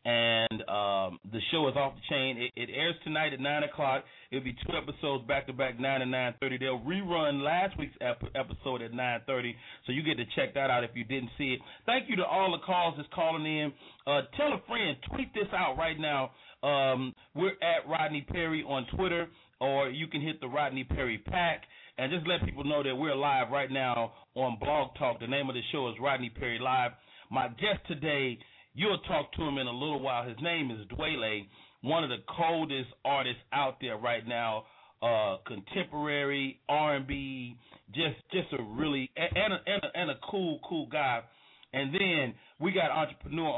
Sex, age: male, 30-49